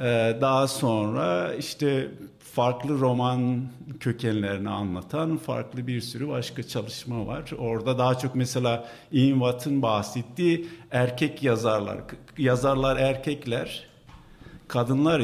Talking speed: 95 wpm